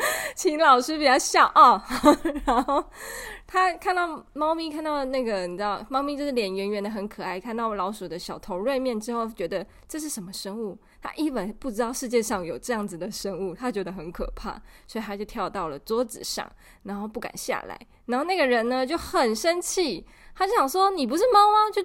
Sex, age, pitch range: female, 20-39, 200-300 Hz